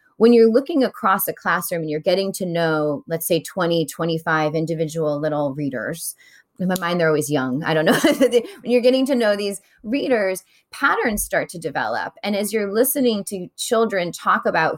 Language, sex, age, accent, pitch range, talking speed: English, female, 30-49, American, 165-215 Hz, 185 wpm